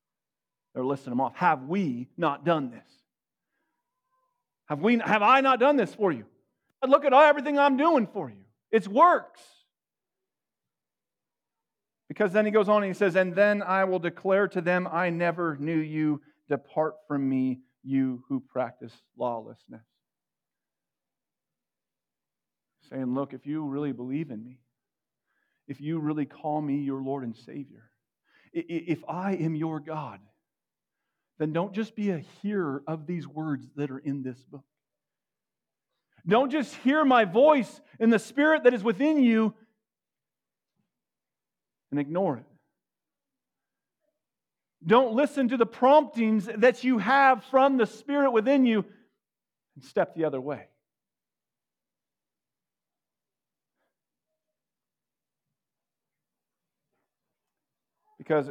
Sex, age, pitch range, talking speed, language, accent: male, 40-59, 140-230 Hz, 125 wpm, English, American